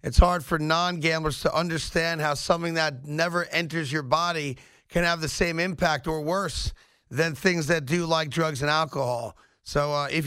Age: 40-59